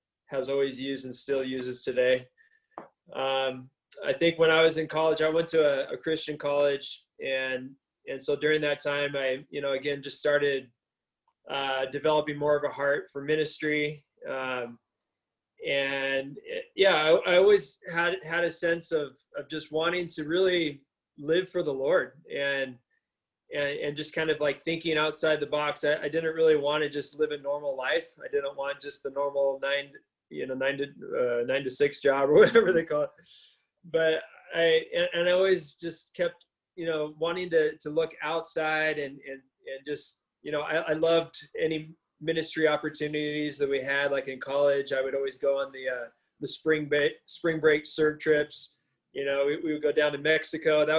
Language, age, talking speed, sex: English, 20-39, 190 wpm, male